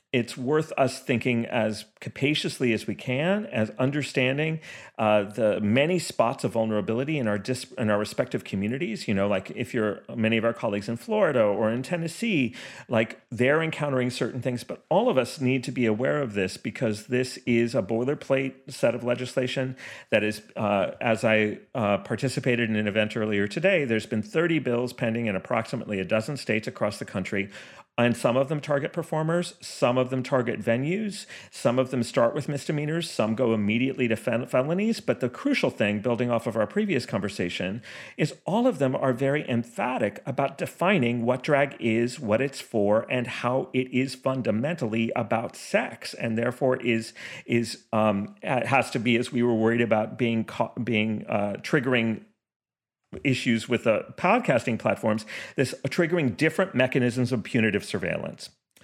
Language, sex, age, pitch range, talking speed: English, male, 40-59, 115-140 Hz, 175 wpm